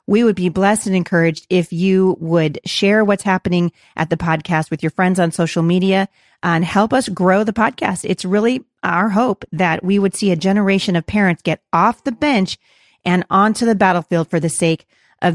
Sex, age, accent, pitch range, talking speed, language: female, 40-59, American, 170-205 Hz, 200 wpm, English